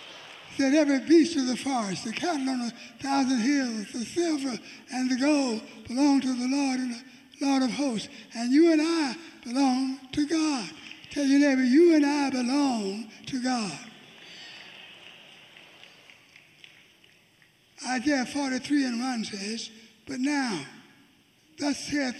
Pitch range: 245-290 Hz